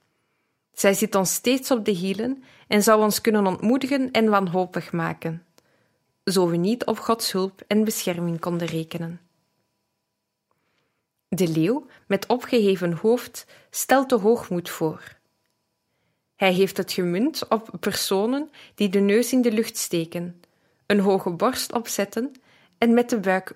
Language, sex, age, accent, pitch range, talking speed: Dutch, female, 20-39, Dutch, 180-225 Hz, 140 wpm